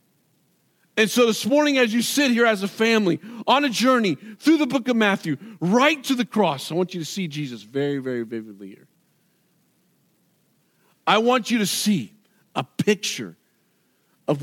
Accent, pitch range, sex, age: American, 175-255 Hz, male, 50-69